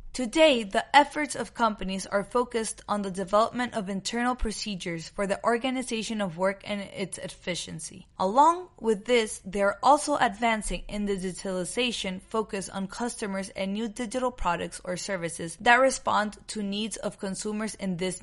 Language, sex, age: English, female, 20-39